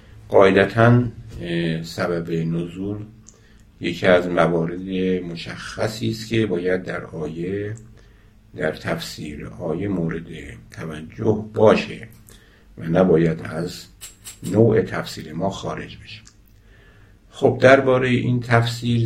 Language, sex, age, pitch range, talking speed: Persian, male, 60-79, 85-110 Hz, 90 wpm